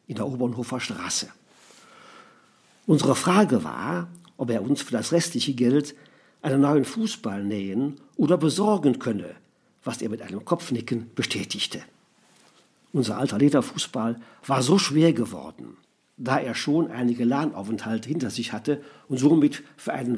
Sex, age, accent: male, 50-69, German